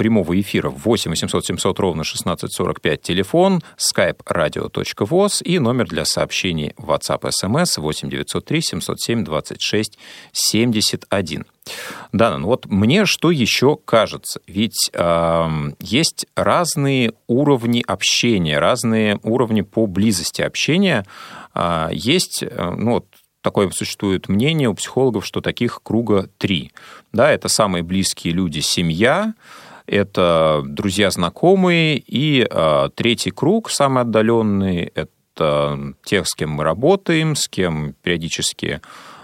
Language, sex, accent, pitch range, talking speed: Russian, male, native, 85-130 Hz, 105 wpm